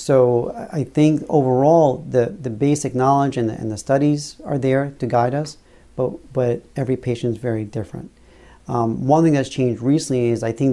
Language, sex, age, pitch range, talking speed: English, male, 40-59, 115-140 Hz, 190 wpm